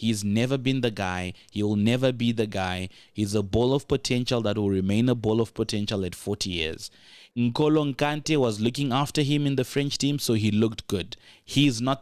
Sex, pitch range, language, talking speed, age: male, 105-135 Hz, English, 210 wpm, 20-39